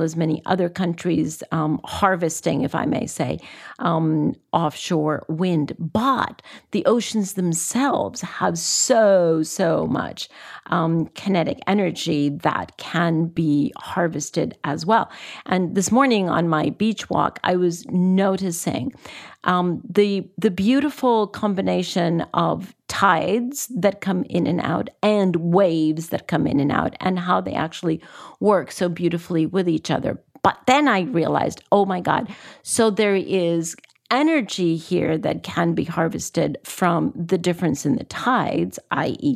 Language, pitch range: English, 170-210 Hz